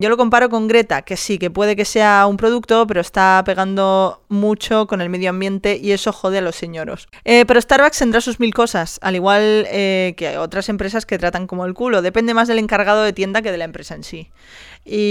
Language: Spanish